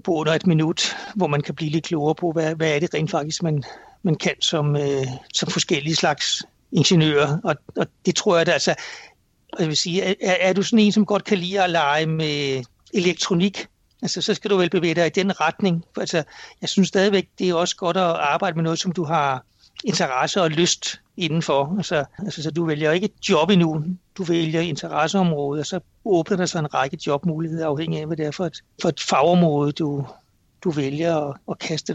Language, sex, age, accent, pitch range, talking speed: Danish, male, 60-79, native, 155-185 Hz, 215 wpm